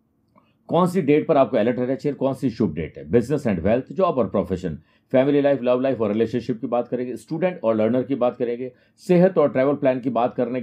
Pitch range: 120-145 Hz